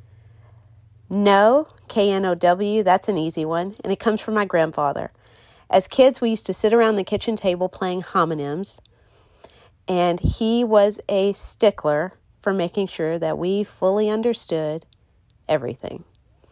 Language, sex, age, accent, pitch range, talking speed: English, female, 40-59, American, 145-195 Hz, 135 wpm